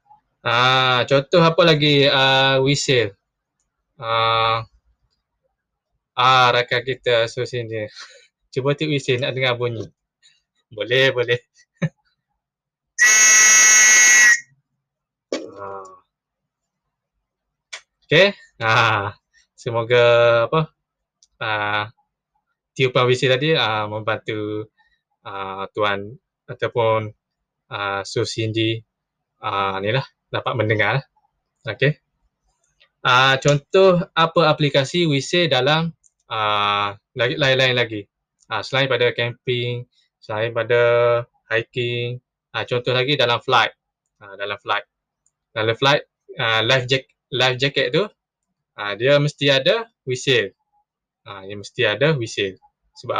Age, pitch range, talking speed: 20-39, 110-155 Hz, 105 wpm